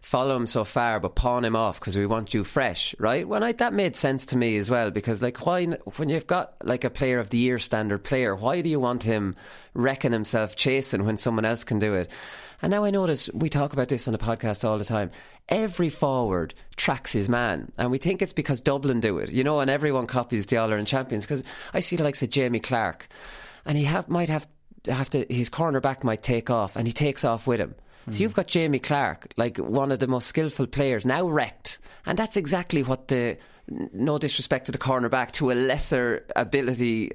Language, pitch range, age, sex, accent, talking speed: English, 120-150 Hz, 30-49, male, Irish, 225 wpm